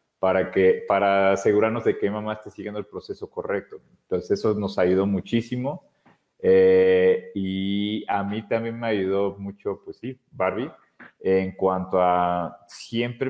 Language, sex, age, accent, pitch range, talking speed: Spanish, male, 30-49, Mexican, 95-120 Hz, 145 wpm